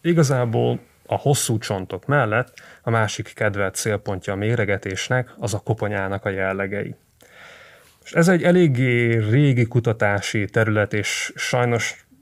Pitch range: 105-130 Hz